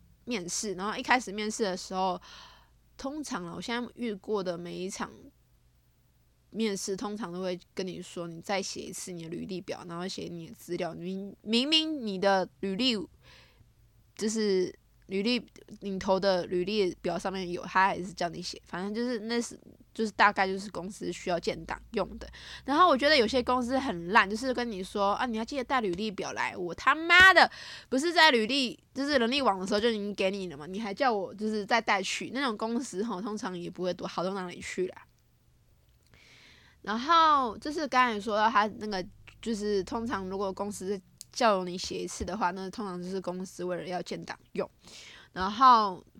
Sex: female